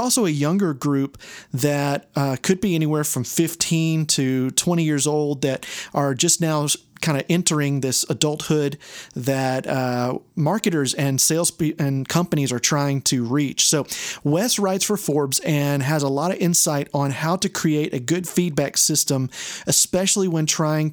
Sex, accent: male, American